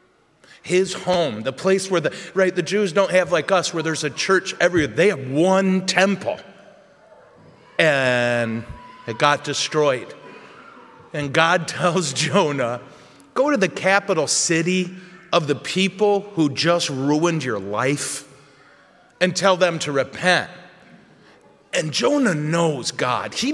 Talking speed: 135 wpm